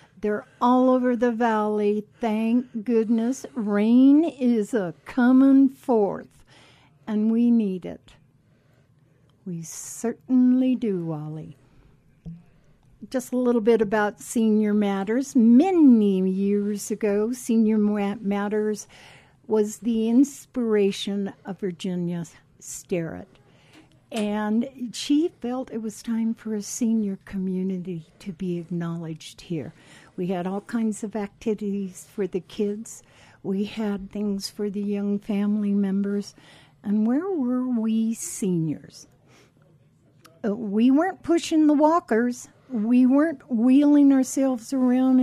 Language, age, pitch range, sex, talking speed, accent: English, 60-79, 185-245 Hz, female, 115 wpm, American